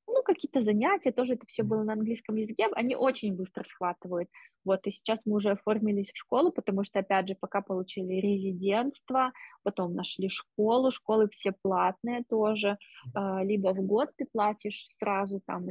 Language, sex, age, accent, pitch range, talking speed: Russian, female, 20-39, native, 195-220 Hz, 160 wpm